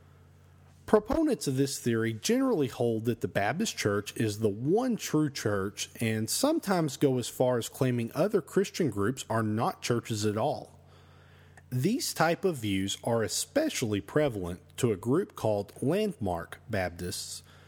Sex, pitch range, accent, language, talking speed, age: male, 95-145 Hz, American, English, 145 wpm, 40-59